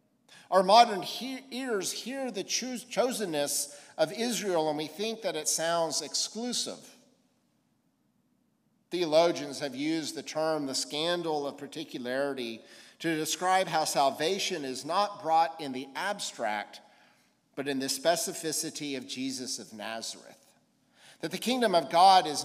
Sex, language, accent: male, English, American